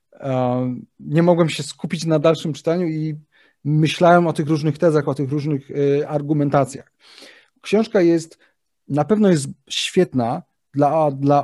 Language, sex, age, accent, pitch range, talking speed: Polish, male, 30-49, native, 140-175 Hz, 130 wpm